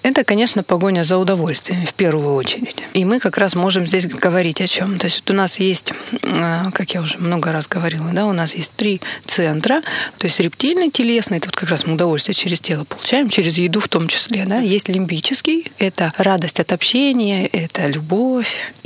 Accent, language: native, Russian